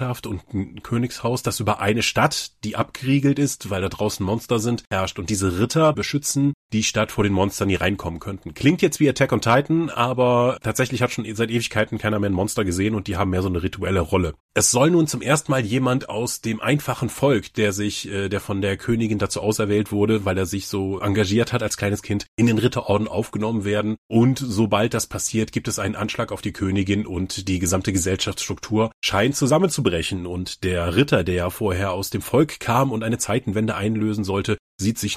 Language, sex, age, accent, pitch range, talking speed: German, male, 30-49, German, 100-125 Hz, 205 wpm